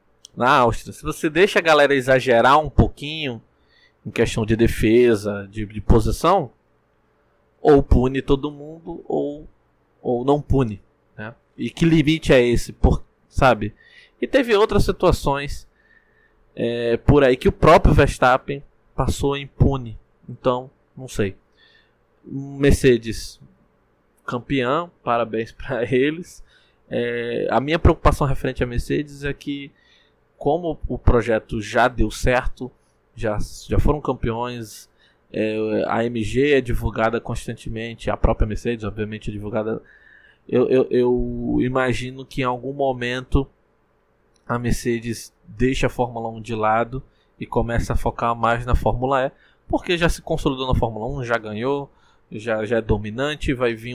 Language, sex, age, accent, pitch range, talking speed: Portuguese, male, 20-39, Brazilian, 115-140 Hz, 140 wpm